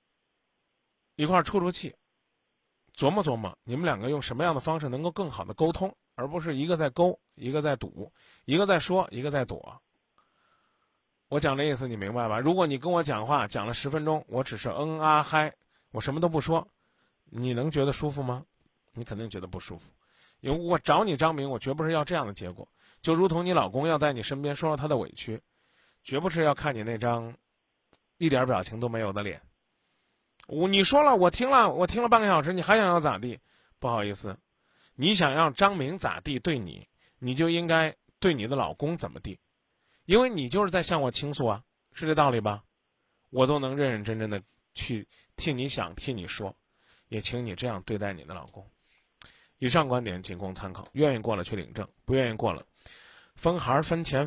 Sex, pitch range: male, 115-165 Hz